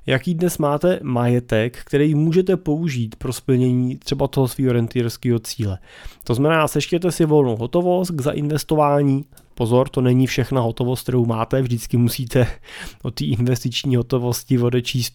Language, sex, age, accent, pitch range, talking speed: Czech, male, 20-39, native, 115-135 Hz, 145 wpm